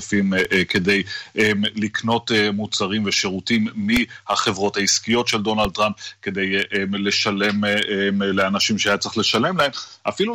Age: 30-49